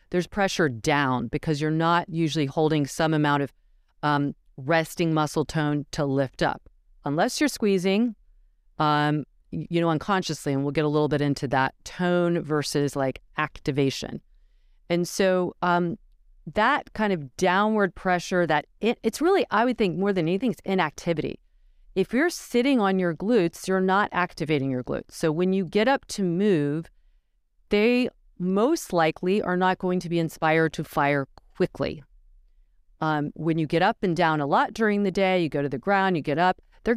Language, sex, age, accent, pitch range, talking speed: English, female, 40-59, American, 150-195 Hz, 175 wpm